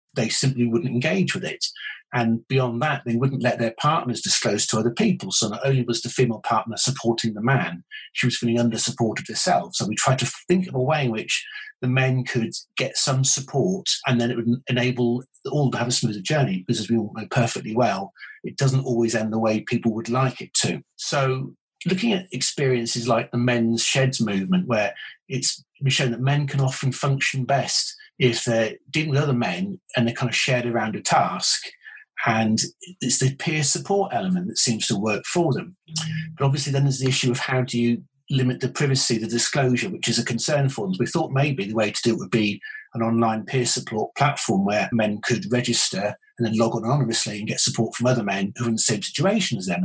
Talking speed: 220 wpm